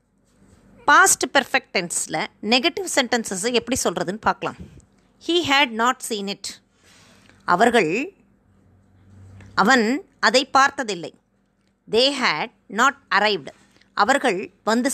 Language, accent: Tamil, native